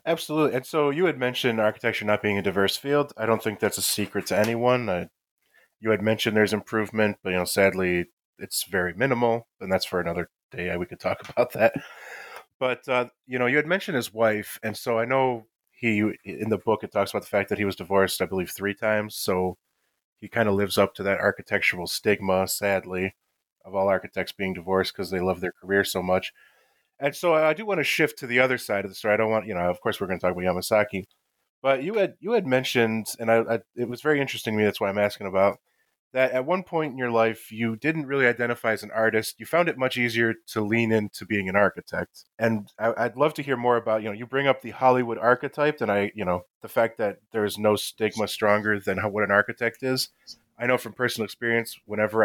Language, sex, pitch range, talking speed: English, male, 100-125 Hz, 230 wpm